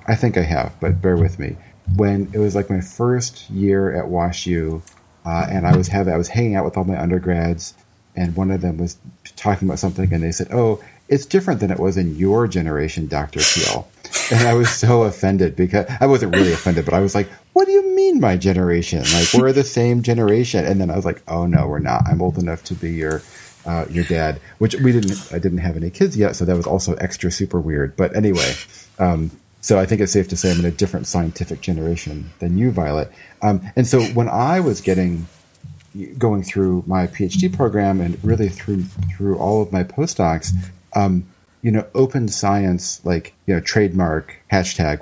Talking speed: 210 wpm